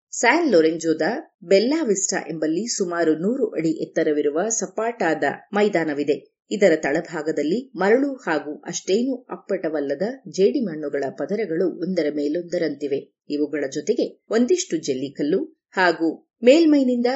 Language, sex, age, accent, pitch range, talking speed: Kannada, female, 30-49, native, 160-255 Hz, 90 wpm